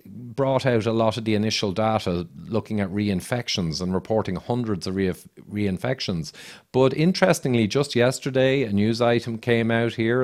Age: 40-59